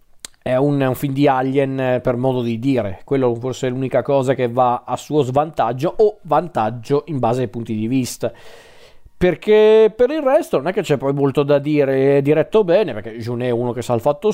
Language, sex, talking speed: Italian, male, 215 wpm